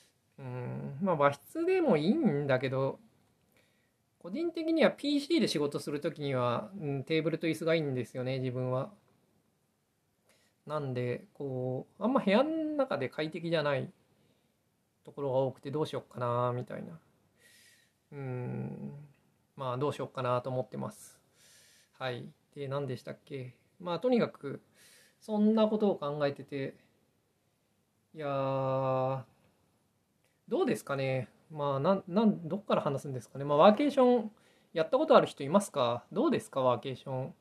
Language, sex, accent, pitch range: Japanese, male, native, 130-170 Hz